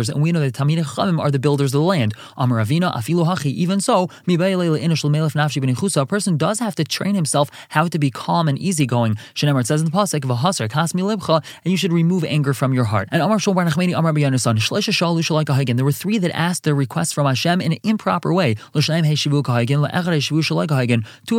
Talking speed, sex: 170 wpm, male